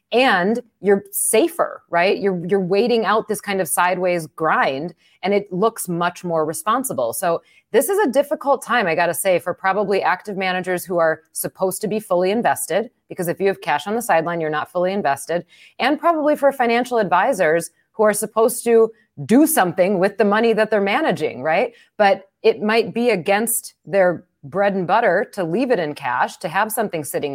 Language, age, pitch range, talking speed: English, 30-49, 175-225 Hz, 195 wpm